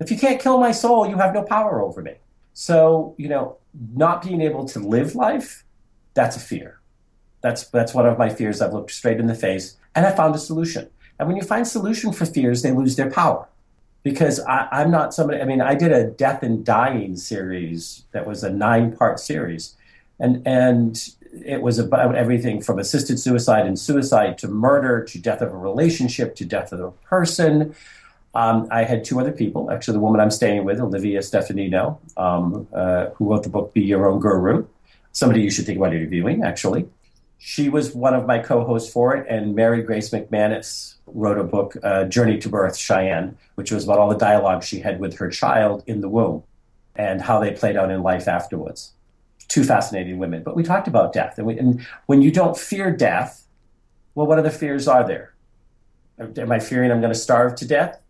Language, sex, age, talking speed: English, male, 40-59, 205 wpm